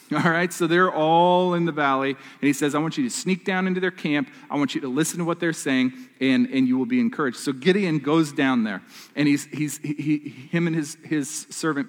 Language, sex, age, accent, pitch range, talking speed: English, male, 40-59, American, 140-190 Hz, 245 wpm